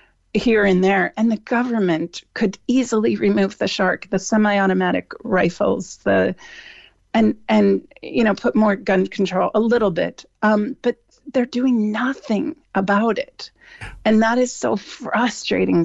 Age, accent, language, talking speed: 40-59, American, English, 145 wpm